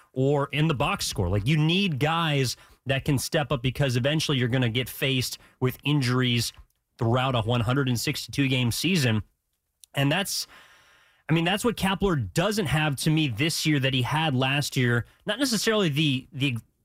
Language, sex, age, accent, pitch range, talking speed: English, male, 30-49, American, 130-170 Hz, 175 wpm